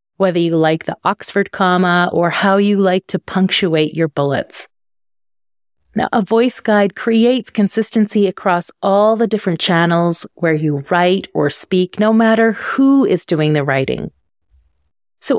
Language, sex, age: English, female, 30-49